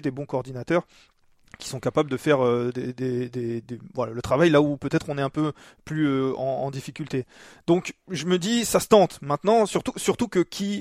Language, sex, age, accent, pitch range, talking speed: French, male, 30-49, French, 135-155 Hz, 195 wpm